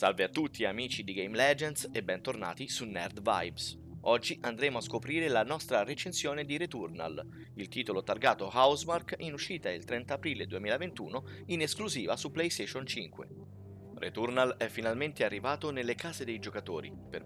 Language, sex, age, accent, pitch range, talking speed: Italian, male, 30-49, native, 115-155 Hz, 155 wpm